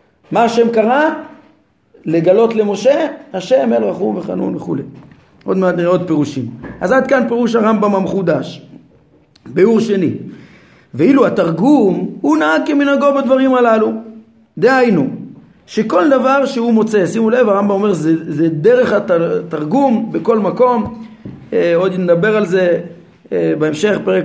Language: Hebrew